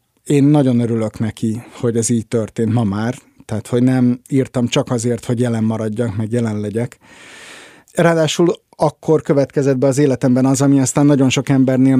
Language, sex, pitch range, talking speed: Hungarian, male, 115-130 Hz, 170 wpm